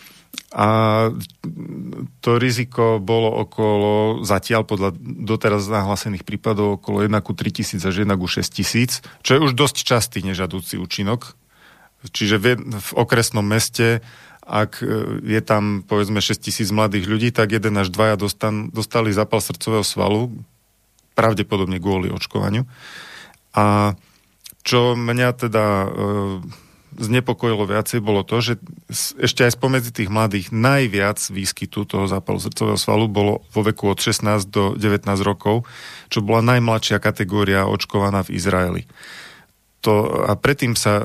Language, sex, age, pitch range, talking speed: Slovak, male, 40-59, 100-115 Hz, 125 wpm